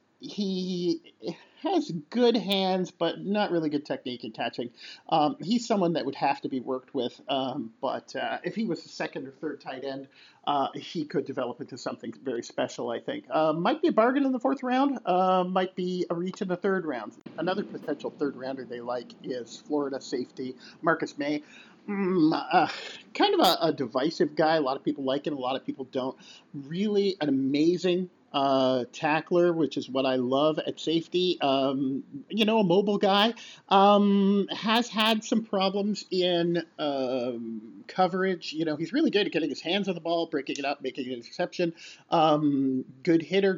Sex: male